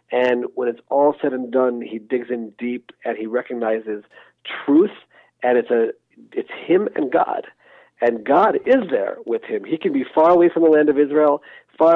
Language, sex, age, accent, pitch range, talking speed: English, male, 50-69, American, 135-165 Hz, 195 wpm